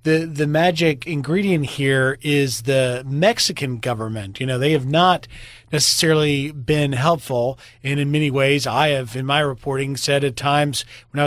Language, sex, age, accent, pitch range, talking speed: English, male, 40-59, American, 135-175 Hz, 165 wpm